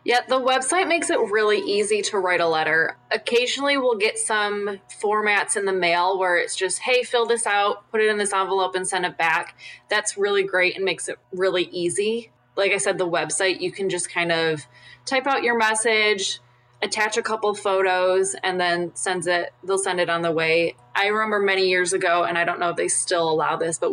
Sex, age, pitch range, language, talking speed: female, 20-39, 160-200 Hz, English, 220 wpm